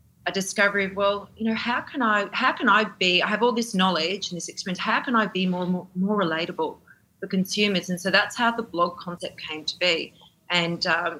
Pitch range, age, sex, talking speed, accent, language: 170-200 Hz, 30-49, female, 230 wpm, Australian, English